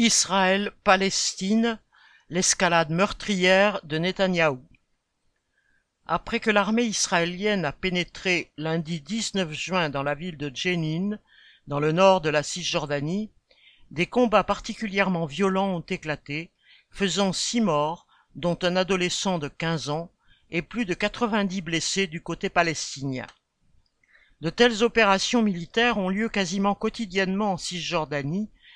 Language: French